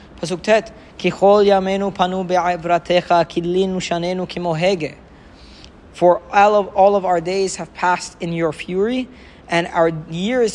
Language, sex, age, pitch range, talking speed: English, male, 20-39, 155-210 Hz, 85 wpm